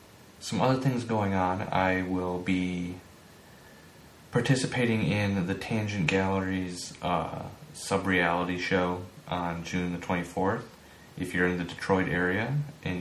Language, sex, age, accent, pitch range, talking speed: English, male, 30-49, American, 85-95 Hz, 120 wpm